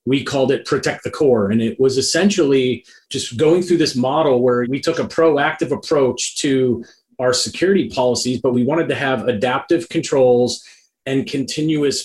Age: 30-49